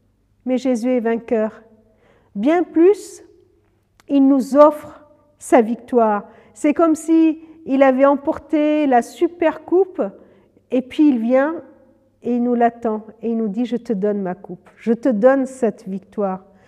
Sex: female